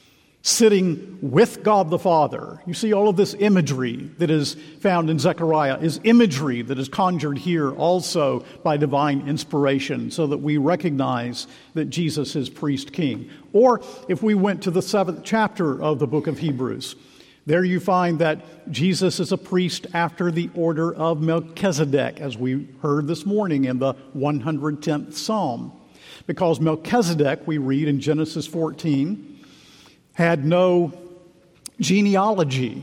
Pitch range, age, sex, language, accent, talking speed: 145-185 Hz, 50-69, male, English, American, 145 wpm